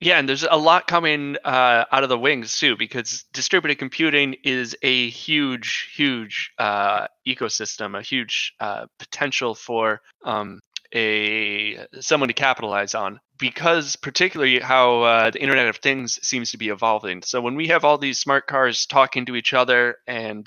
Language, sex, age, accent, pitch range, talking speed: English, male, 20-39, American, 115-140 Hz, 165 wpm